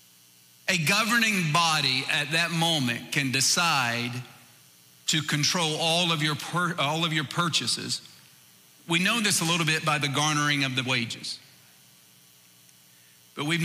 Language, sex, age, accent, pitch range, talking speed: English, male, 40-59, American, 125-170 Hz, 130 wpm